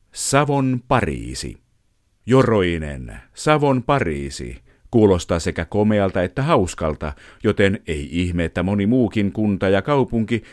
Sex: male